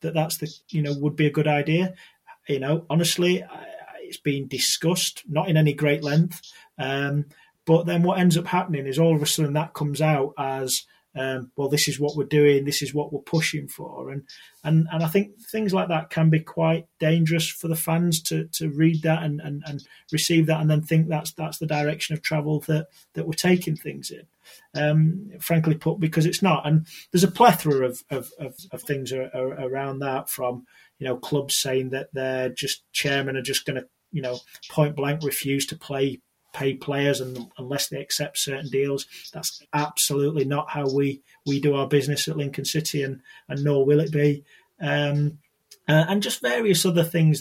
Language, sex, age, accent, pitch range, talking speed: English, male, 30-49, British, 140-160 Hz, 205 wpm